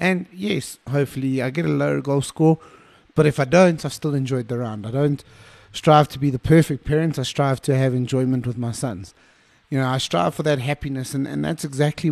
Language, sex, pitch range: English, male, 125-145 Hz